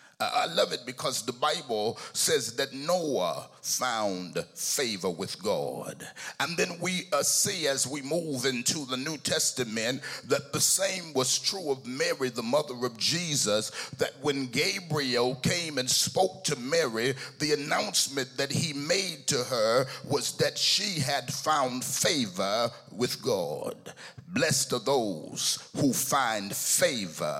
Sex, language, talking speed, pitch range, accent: male, English, 140 wpm, 130-185 Hz, American